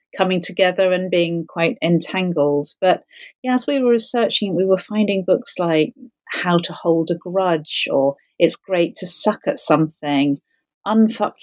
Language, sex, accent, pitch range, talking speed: English, female, British, 160-195 Hz, 155 wpm